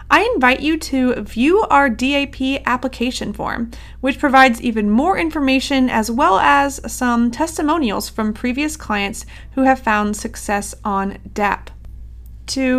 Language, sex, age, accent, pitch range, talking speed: English, female, 30-49, American, 215-275 Hz, 135 wpm